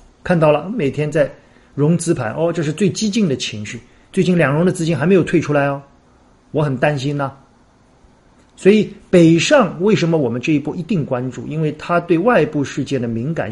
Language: Chinese